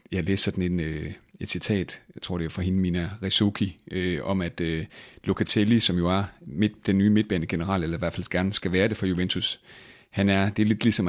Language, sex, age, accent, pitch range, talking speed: Danish, male, 30-49, native, 90-105 Hz, 235 wpm